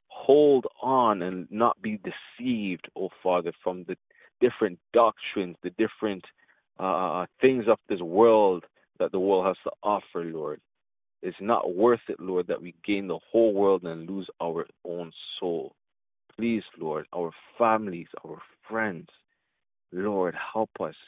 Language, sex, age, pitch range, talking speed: English, male, 30-49, 85-105 Hz, 150 wpm